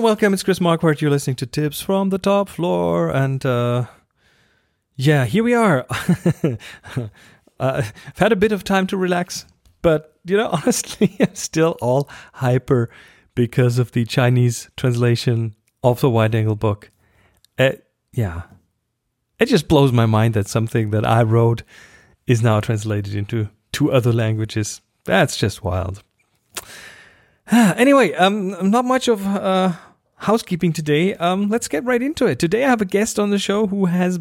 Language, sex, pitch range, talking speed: English, male, 120-180 Hz, 160 wpm